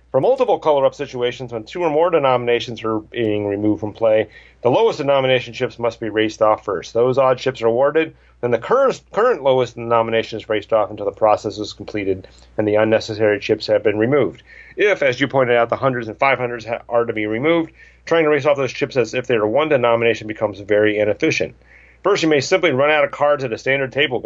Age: 40-59